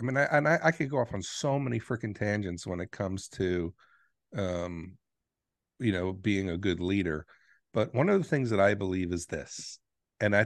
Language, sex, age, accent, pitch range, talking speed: English, male, 50-69, American, 90-110 Hz, 210 wpm